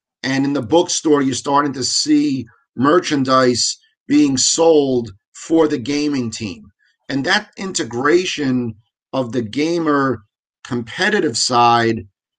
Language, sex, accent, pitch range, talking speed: English, male, American, 125-165 Hz, 110 wpm